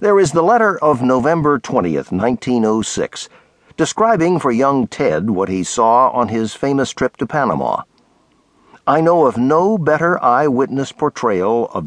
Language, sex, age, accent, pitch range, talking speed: English, male, 60-79, American, 115-175 Hz, 145 wpm